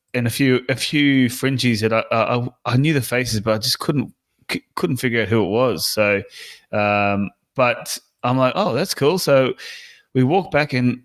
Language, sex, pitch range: English, male, 115-140 Hz